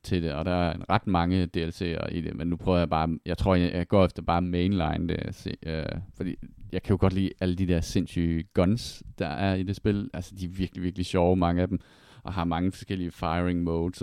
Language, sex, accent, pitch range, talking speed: Danish, male, native, 85-100 Hz, 245 wpm